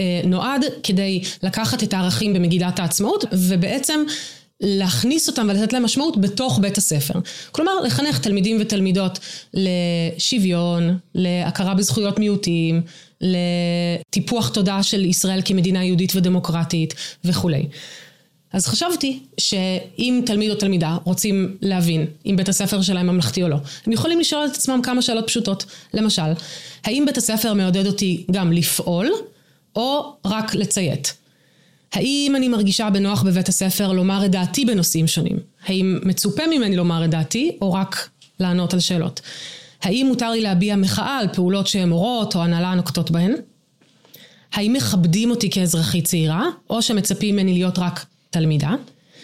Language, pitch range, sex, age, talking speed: Hebrew, 175-215 Hz, female, 20-39, 135 wpm